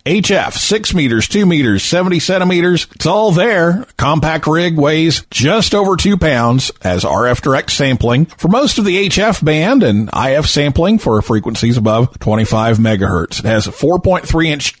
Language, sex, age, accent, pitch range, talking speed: English, male, 50-69, American, 115-170 Hz, 160 wpm